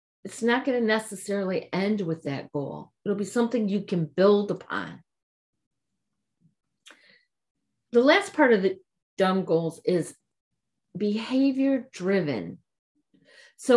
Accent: American